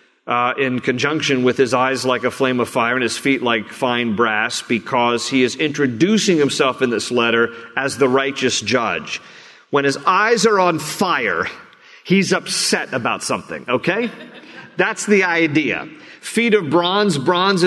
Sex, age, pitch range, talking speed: male, 50-69, 135-175 Hz, 160 wpm